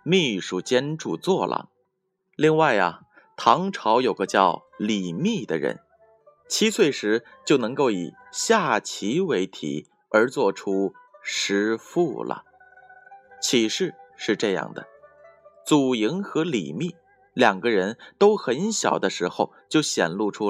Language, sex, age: Chinese, male, 20-39